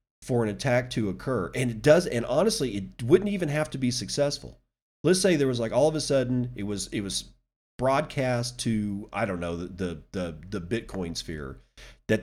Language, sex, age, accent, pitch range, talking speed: English, male, 40-59, American, 100-125 Hz, 205 wpm